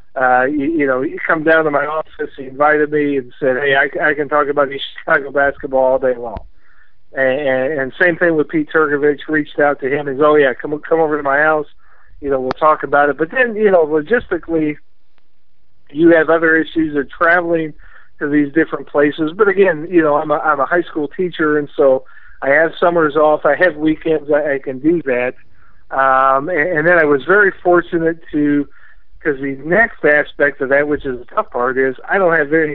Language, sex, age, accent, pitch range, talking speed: English, male, 50-69, American, 140-160 Hz, 215 wpm